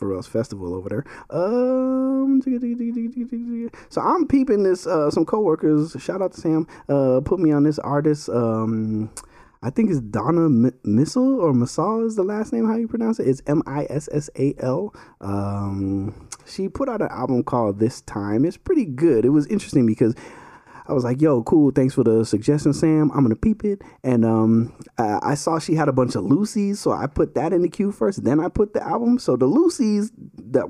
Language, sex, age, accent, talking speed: English, male, 20-39, American, 190 wpm